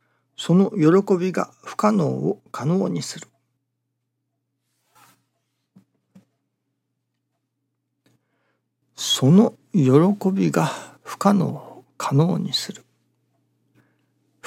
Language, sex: Japanese, male